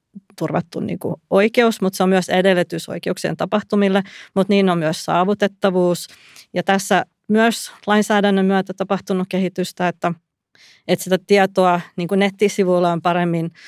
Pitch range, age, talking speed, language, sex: 170-190 Hz, 30-49, 135 wpm, Finnish, female